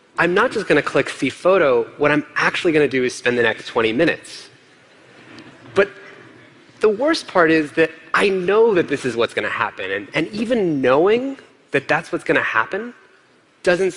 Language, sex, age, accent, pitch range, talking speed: English, male, 30-49, American, 140-225 Hz, 195 wpm